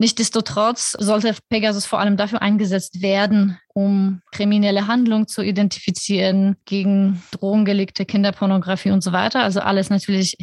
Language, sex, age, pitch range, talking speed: German, female, 20-39, 195-215 Hz, 125 wpm